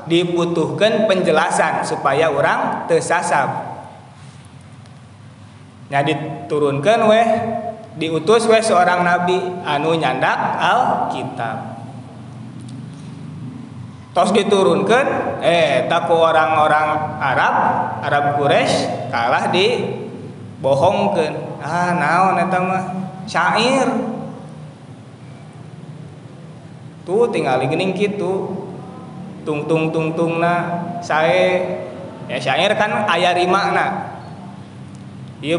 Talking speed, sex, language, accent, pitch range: 75 wpm, male, Indonesian, native, 140-175 Hz